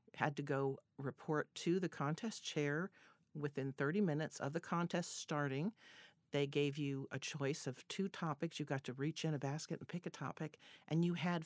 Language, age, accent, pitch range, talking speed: English, 50-69, American, 140-170 Hz, 195 wpm